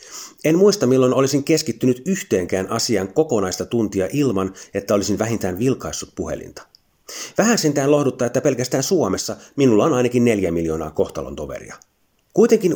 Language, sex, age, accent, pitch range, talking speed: Finnish, male, 30-49, native, 100-145 Hz, 135 wpm